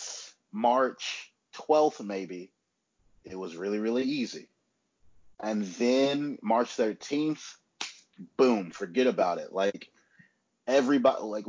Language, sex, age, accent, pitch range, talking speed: English, male, 30-49, American, 100-125 Hz, 100 wpm